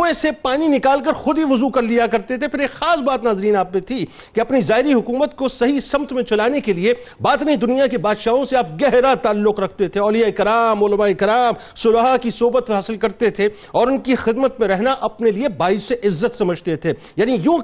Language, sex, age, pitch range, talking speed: Urdu, male, 50-69, 215-265 Hz, 230 wpm